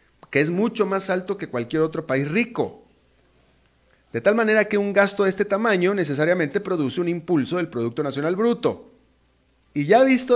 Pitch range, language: 120-190 Hz, Spanish